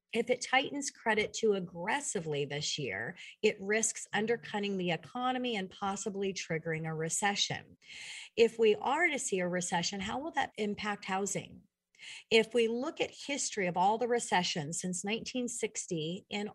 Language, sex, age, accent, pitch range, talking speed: English, female, 40-59, American, 175-230 Hz, 150 wpm